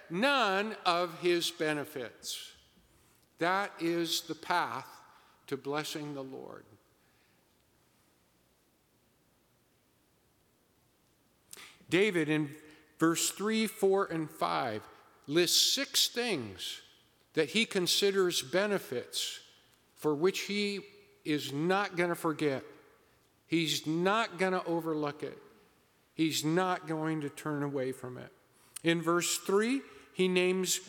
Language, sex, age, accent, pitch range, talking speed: English, male, 50-69, American, 160-210 Hz, 105 wpm